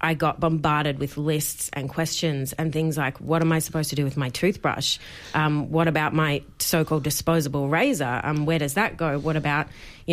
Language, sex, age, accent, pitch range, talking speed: English, female, 30-49, Australian, 145-165 Hz, 200 wpm